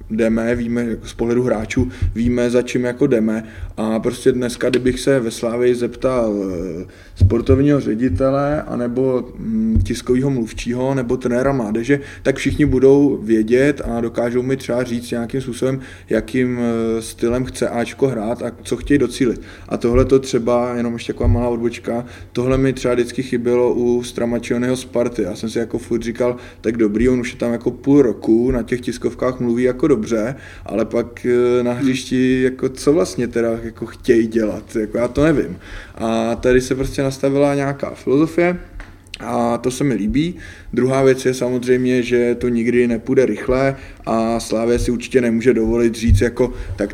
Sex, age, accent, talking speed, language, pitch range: male, 20-39, native, 165 wpm, Czech, 110-125 Hz